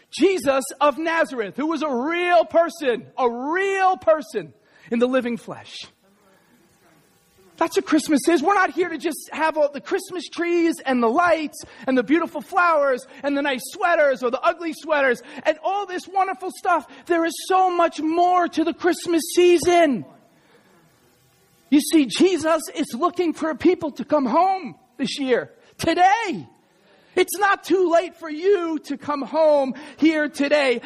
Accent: American